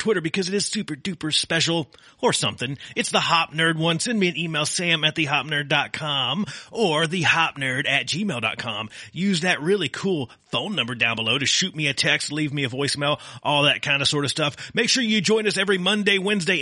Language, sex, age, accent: English, male, 30-49, American